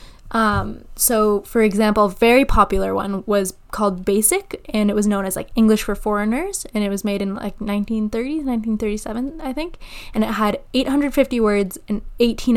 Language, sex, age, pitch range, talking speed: English, female, 10-29, 200-235 Hz, 185 wpm